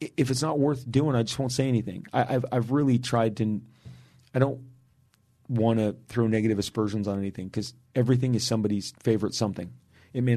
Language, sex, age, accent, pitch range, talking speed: English, male, 40-59, American, 110-130 Hz, 190 wpm